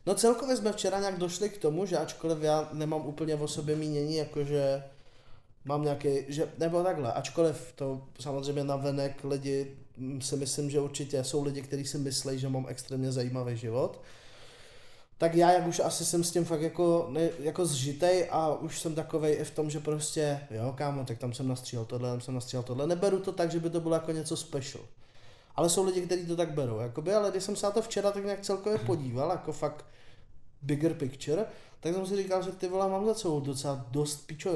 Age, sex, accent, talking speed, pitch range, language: 20-39, male, native, 210 wpm, 140-170 Hz, Czech